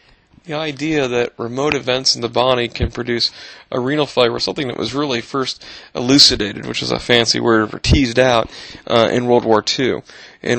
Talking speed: 185 wpm